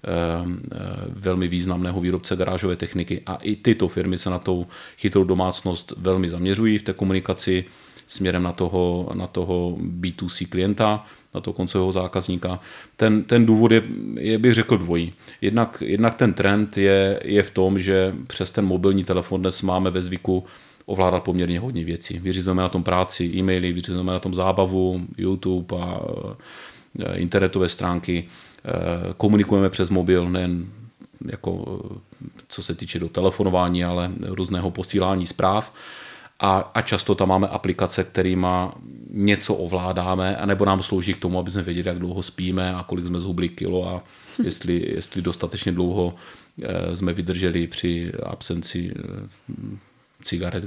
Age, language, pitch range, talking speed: 30-49, Czech, 90-100 Hz, 145 wpm